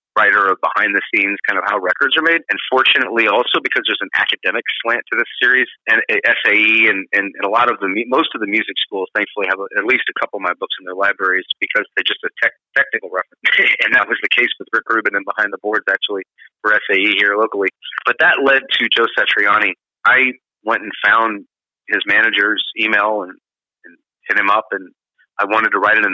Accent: American